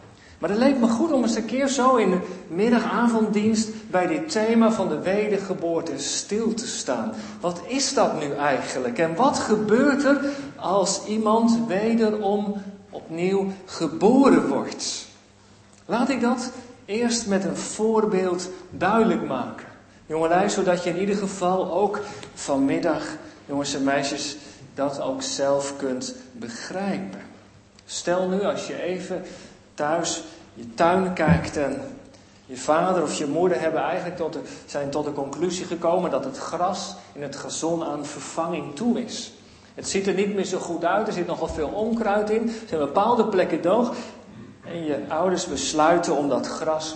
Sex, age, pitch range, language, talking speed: male, 50-69, 150-220 Hz, Dutch, 155 wpm